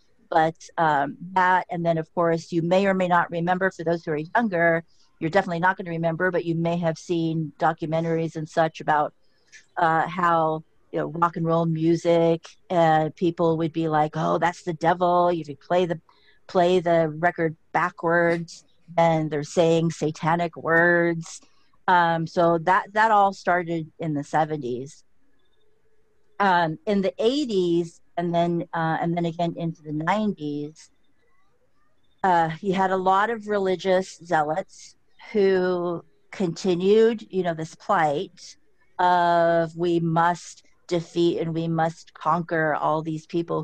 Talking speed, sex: 150 wpm, female